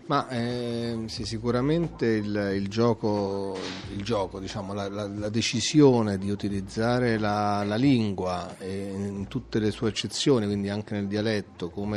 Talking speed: 145 wpm